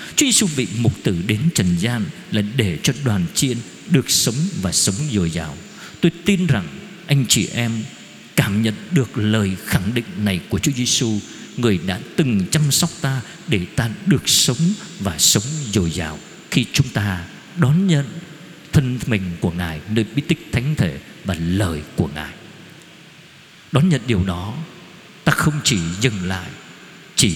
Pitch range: 110-165 Hz